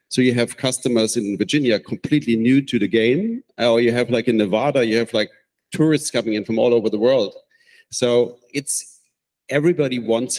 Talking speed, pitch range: 185 wpm, 115-135 Hz